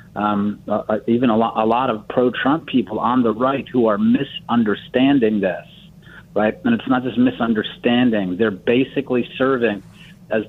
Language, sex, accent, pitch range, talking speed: English, male, American, 110-130 Hz, 150 wpm